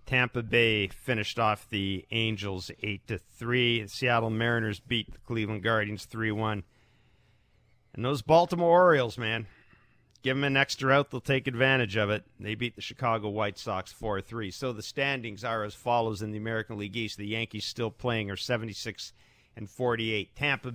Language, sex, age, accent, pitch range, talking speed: English, male, 50-69, American, 100-125 Hz, 160 wpm